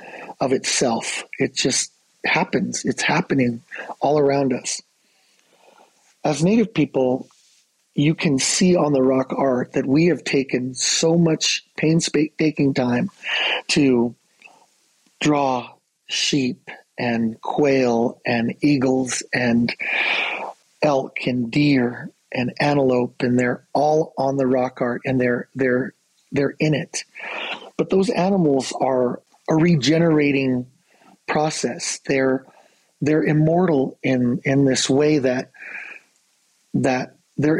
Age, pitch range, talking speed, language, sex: 40-59, 130-155 Hz, 115 wpm, English, male